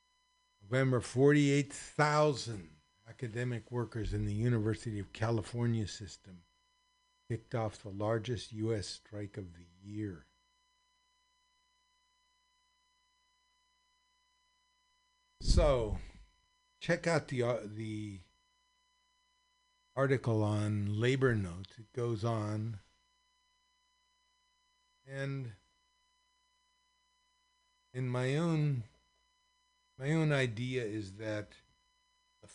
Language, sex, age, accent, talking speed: English, male, 50-69, American, 75 wpm